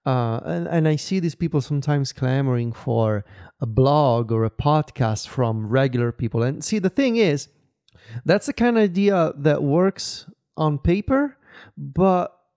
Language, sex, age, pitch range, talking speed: English, male, 30-49, 125-170 Hz, 160 wpm